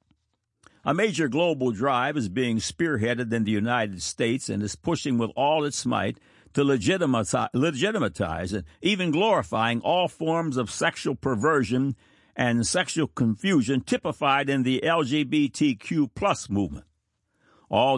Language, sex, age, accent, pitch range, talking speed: English, male, 60-79, American, 110-155 Hz, 125 wpm